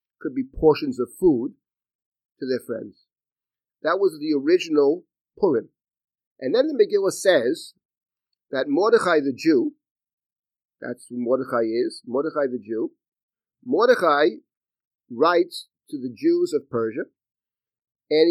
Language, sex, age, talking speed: English, male, 50-69, 120 wpm